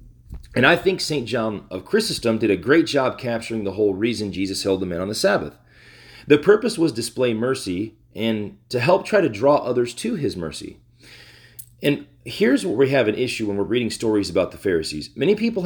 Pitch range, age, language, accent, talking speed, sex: 110-140 Hz, 40-59, English, American, 205 wpm, male